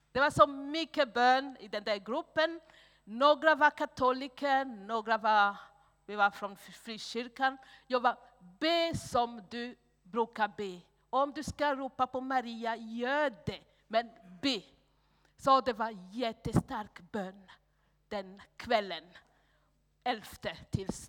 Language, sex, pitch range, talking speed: Swedish, female, 210-280 Hz, 130 wpm